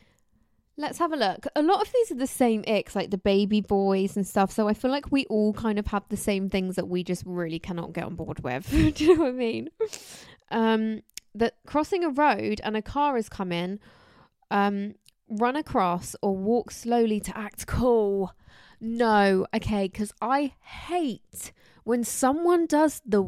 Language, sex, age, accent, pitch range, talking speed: English, female, 20-39, British, 200-290 Hz, 190 wpm